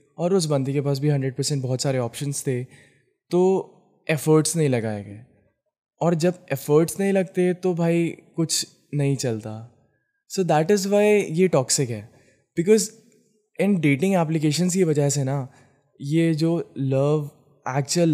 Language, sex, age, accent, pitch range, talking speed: Hindi, male, 20-39, native, 135-170 Hz, 150 wpm